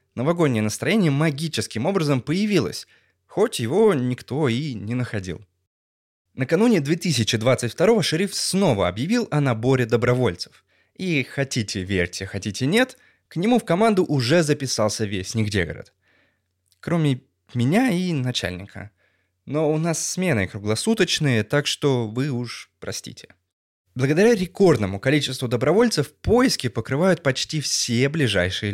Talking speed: 115 wpm